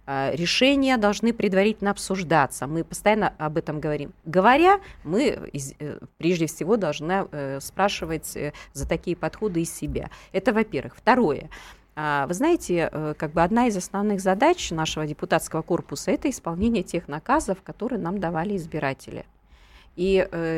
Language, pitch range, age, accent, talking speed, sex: Russian, 150-200 Hz, 30-49, native, 120 wpm, female